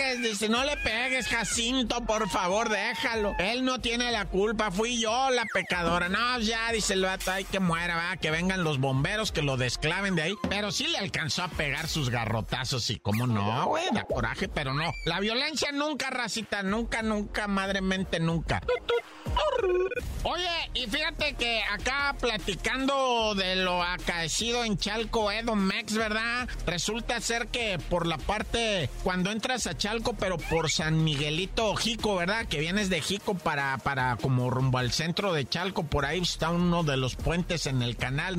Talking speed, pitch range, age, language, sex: 175 wpm, 160-225 Hz, 50-69, Spanish, male